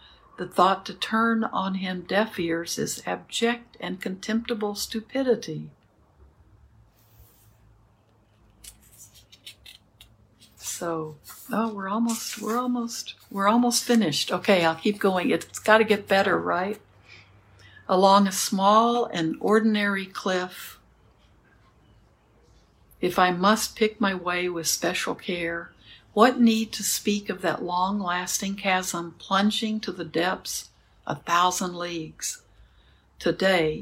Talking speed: 110 wpm